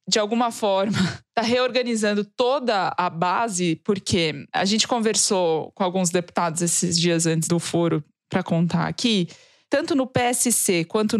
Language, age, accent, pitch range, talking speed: Portuguese, 20-39, Brazilian, 185-245 Hz, 145 wpm